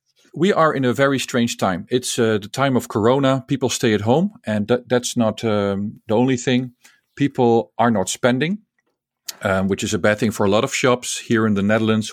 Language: English